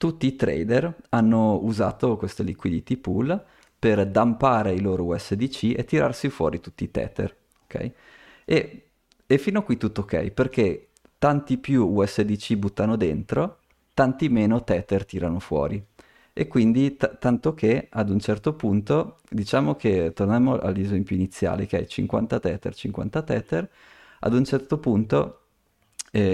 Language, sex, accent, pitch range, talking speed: Italian, male, native, 100-125 Hz, 145 wpm